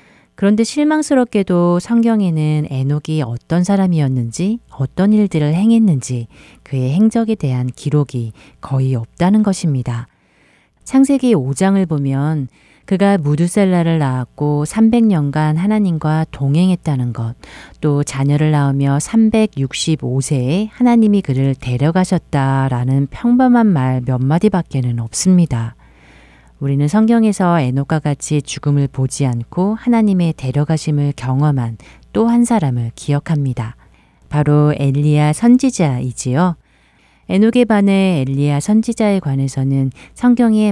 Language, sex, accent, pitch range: Korean, female, native, 130-190 Hz